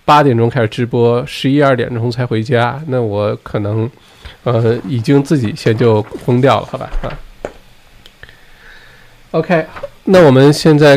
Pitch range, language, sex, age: 115-145 Hz, Chinese, male, 20-39